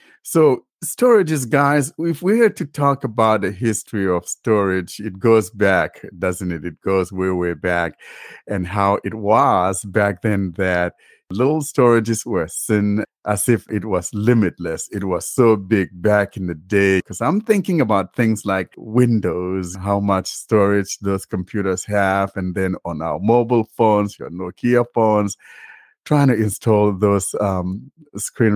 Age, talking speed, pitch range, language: 50-69, 160 wpm, 95-130 Hz, English